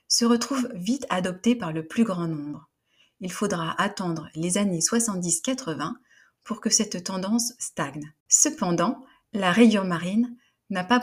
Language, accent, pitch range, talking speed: French, French, 180-235 Hz, 140 wpm